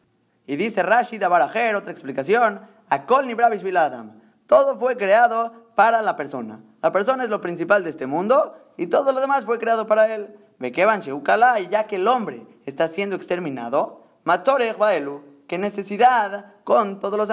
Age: 20-39